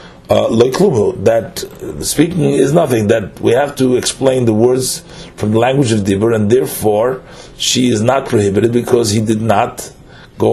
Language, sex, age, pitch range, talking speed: English, male, 40-59, 100-120 Hz, 160 wpm